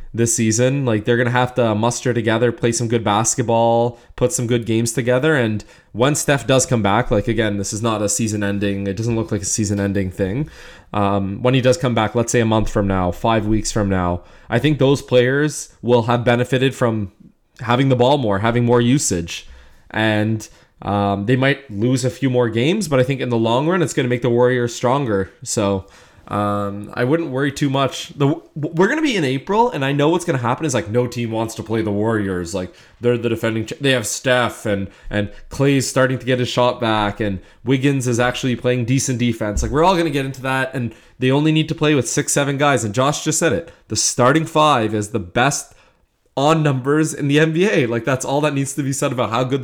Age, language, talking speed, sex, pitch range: 20-39, English, 225 wpm, male, 110-135 Hz